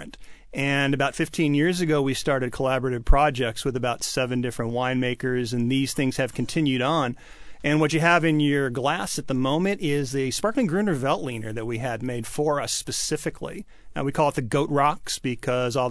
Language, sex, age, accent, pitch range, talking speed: English, male, 40-59, American, 125-150 Hz, 190 wpm